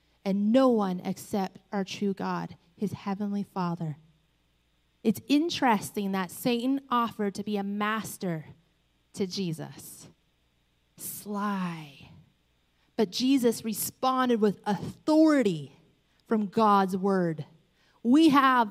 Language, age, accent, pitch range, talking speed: English, 30-49, American, 160-220 Hz, 105 wpm